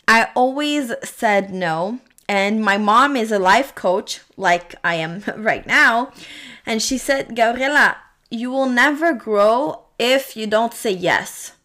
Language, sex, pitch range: English, female, 205-255 Hz